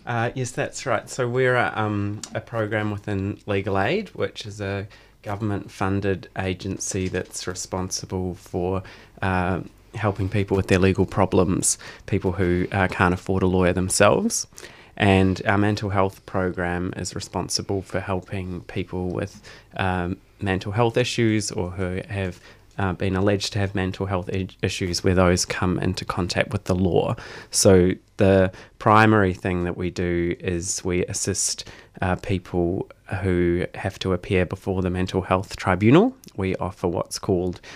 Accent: Australian